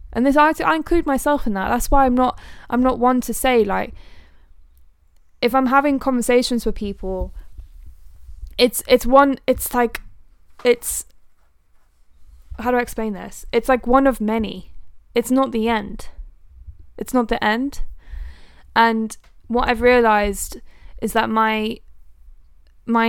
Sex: female